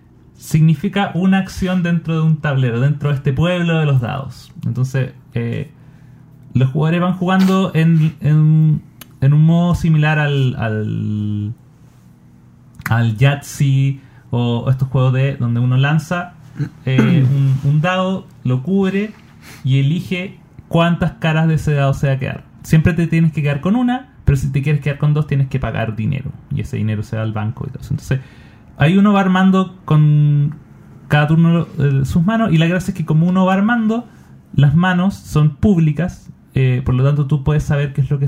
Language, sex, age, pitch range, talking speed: Spanish, male, 30-49, 135-165 Hz, 185 wpm